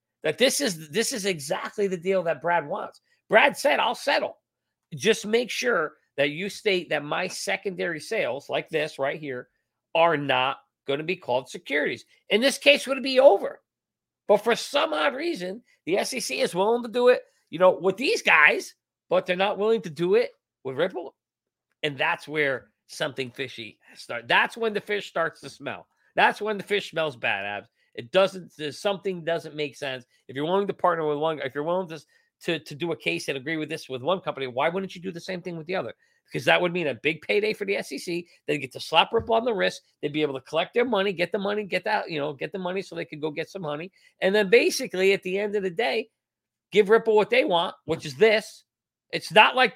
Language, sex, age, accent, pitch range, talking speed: English, male, 40-59, American, 155-225 Hz, 230 wpm